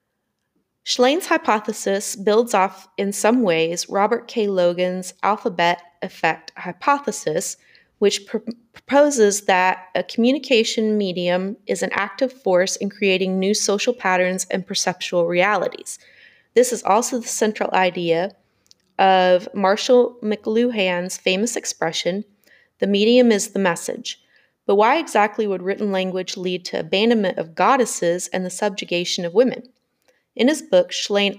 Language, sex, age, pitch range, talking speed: English, female, 30-49, 185-235 Hz, 130 wpm